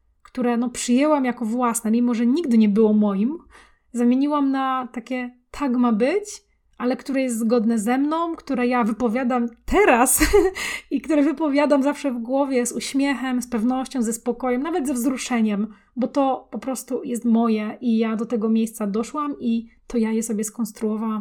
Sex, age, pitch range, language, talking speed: female, 20-39, 225-260 Hz, Polish, 165 wpm